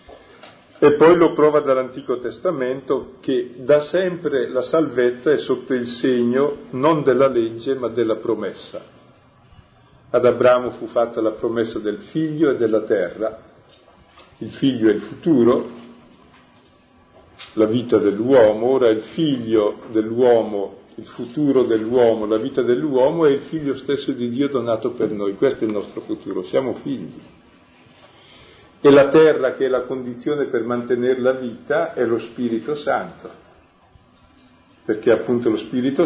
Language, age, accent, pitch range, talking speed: Italian, 50-69, native, 115-145 Hz, 140 wpm